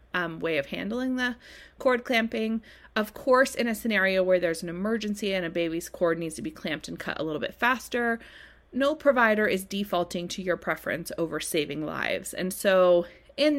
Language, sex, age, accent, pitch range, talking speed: English, female, 30-49, American, 180-245 Hz, 190 wpm